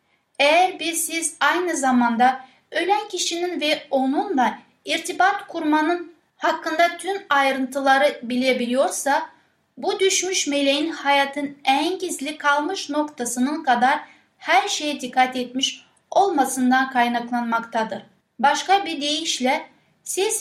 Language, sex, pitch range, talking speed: Turkish, female, 245-320 Hz, 100 wpm